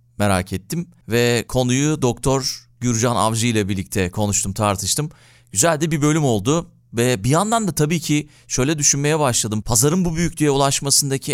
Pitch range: 110-140 Hz